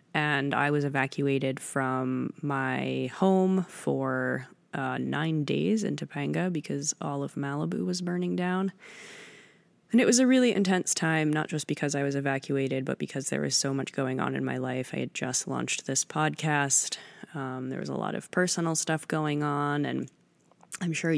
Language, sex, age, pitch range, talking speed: English, female, 20-39, 140-170 Hz, 180 wpm